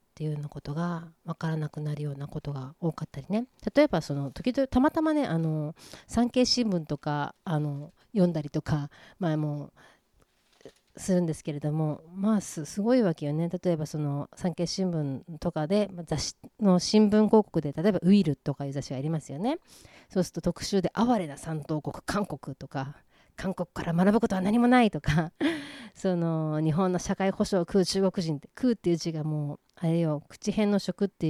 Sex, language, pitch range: female, Japanese, 150-205 Hz